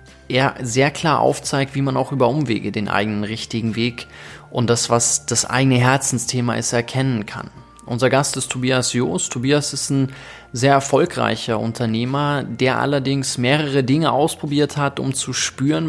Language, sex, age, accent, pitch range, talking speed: German, male, 20-39, German, 120-145 Hz, 160 wpm